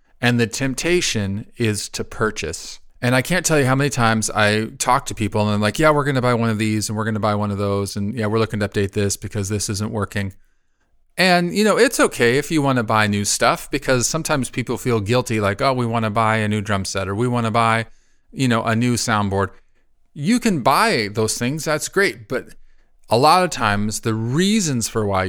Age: 40-59